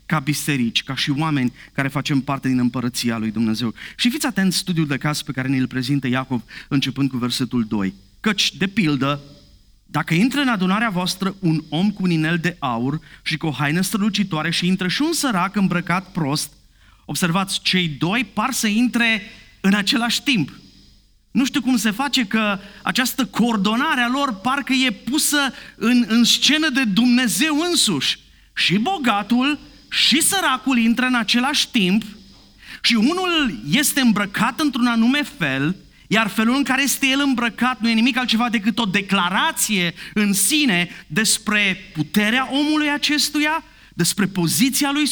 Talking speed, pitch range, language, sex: 160 wpm, 155-250 Hz, Romanian, male